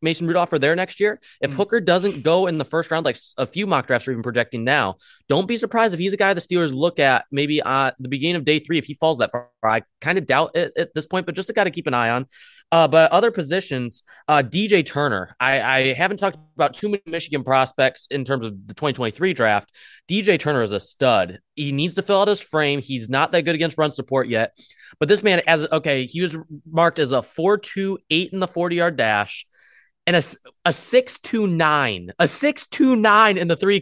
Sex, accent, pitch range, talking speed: male, American, 130-175 Hz, 245 wpm